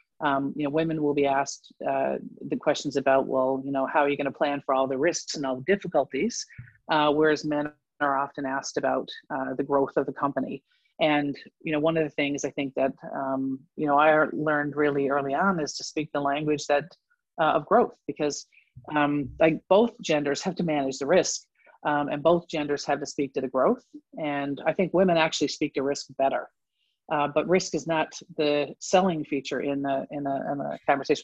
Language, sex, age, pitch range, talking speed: English, female, 40-59, 140-160 Hz, 215 wpm